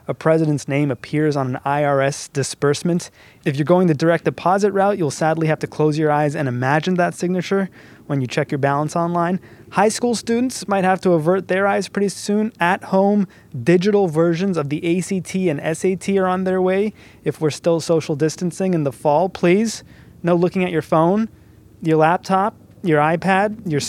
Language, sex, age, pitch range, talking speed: English, male, 20-39, 145-180 Hz, 190 wpm